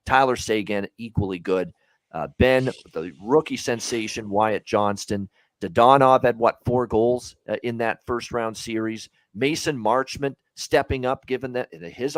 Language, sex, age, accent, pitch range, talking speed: English, male, 40-59, American, 105-130 Hz, 140 wpm